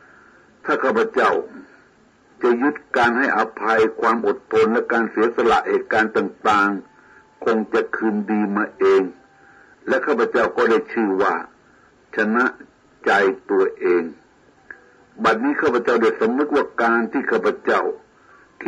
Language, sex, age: Thai, male, 60-79